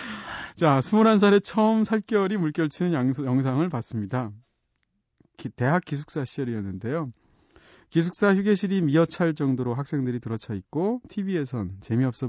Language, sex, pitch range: Korean, male, 110-170 Hz